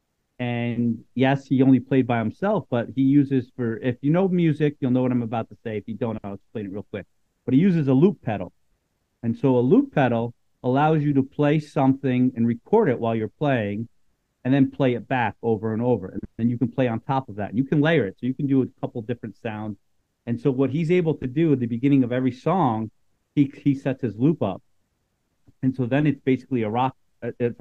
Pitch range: 110-140 Hz